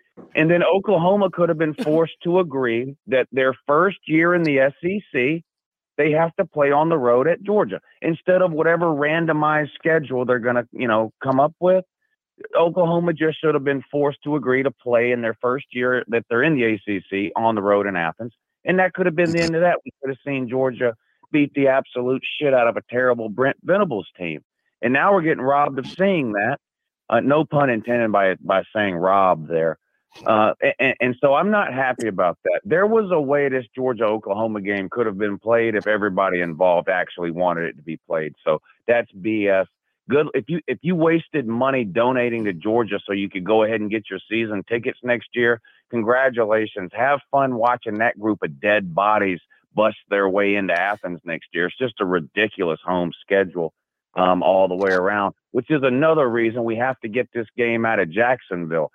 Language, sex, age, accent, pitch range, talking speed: English, male, 40-59, American, 110-155 Hz, 200 wpm